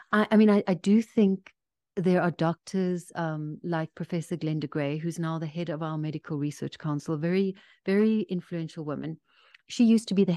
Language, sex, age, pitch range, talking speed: English, female, 30-49, 155-195 Hz, 190 wpm